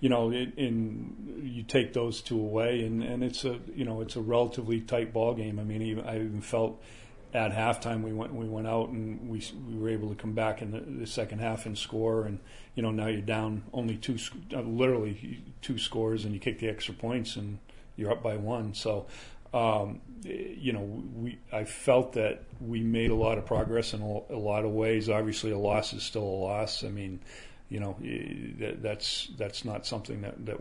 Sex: male